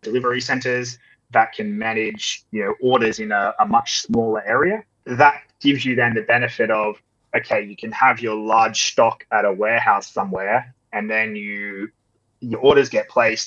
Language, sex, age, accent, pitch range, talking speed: English, male, 20-39, Australian, 105-130 Hz, 175 wpm